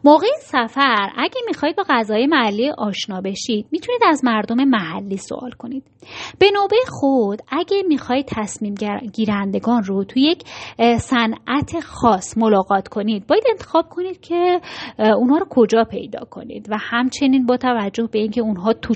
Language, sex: Persian, female